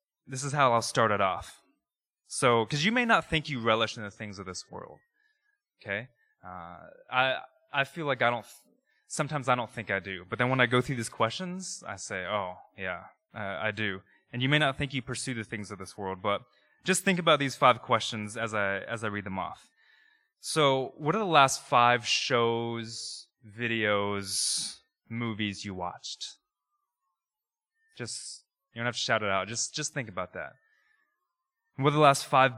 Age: 20-39